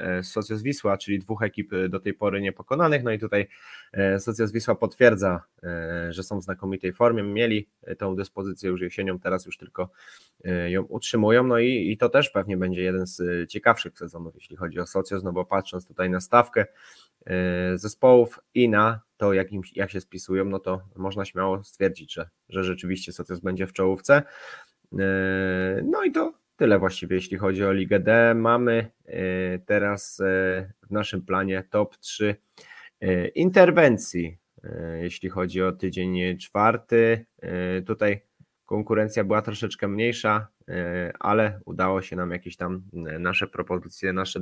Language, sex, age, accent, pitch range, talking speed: Polish, male, 20-39, native, 90-110 Hz, 145 wpm